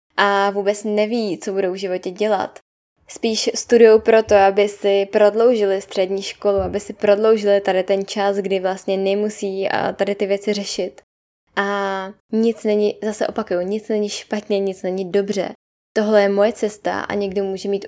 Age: 10-29